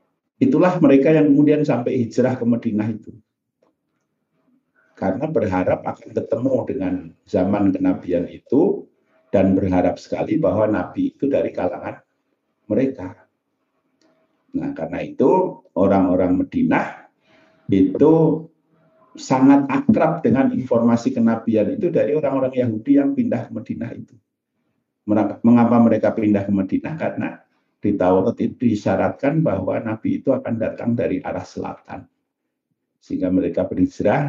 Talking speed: 110 wpm